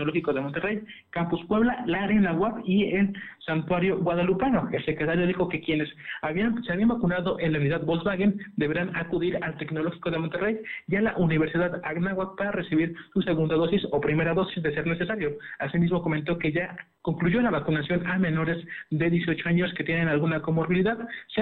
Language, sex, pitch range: Spanish, male, 160-190 Hz